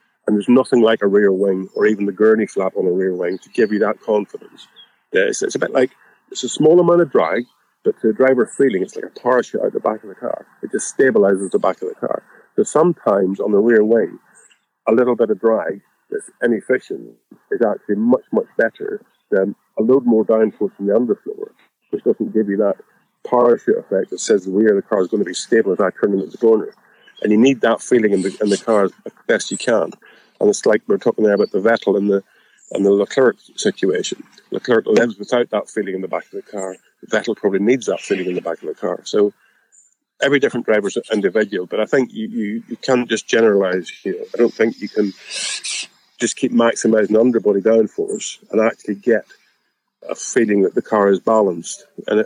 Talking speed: 225 wpm